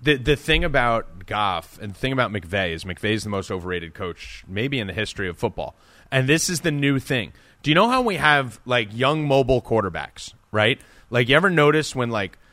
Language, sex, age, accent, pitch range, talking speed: English, male, 30-49, American, 110-145 Hz, 215 wpm